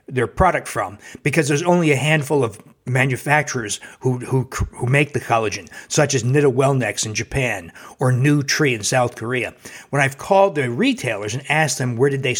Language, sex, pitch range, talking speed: English, male, 130-160 Hz, 190 wpm